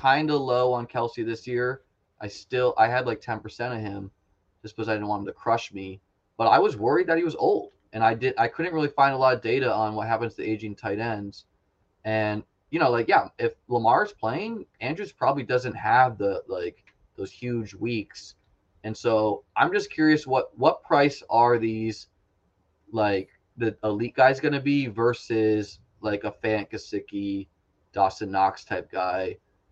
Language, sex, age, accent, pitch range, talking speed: English, male, 20-39, American, 100-130 Hz, 190 wpm